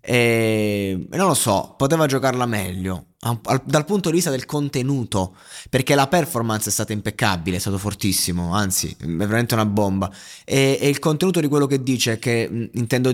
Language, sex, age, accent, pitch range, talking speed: Italian, male, 20-39, native, 105-135 Hz, 165 wpm